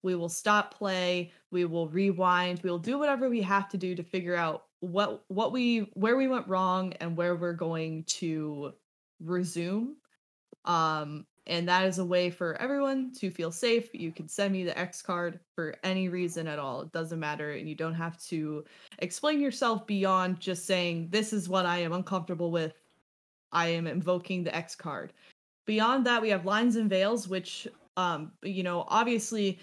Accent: American